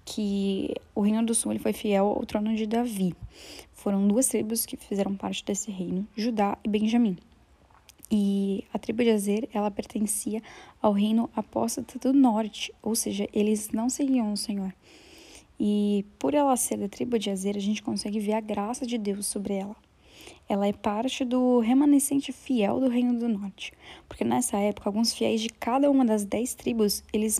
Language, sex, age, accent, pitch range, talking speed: Portuguese, female, 10-29, Brazilian, 205-240 Hz, 180 wpm